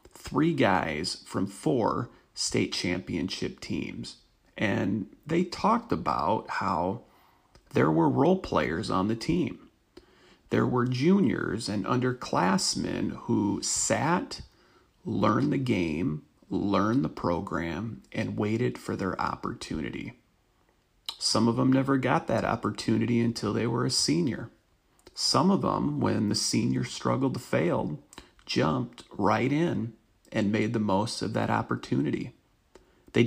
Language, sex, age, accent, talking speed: English, male, 40-59, American, 125 wpm